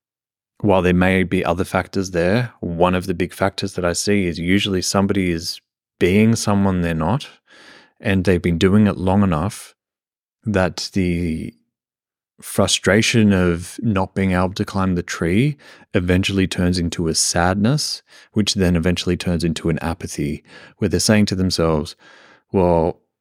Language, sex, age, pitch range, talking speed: English, male, 30-49, 85-100 Hz, 155 wpm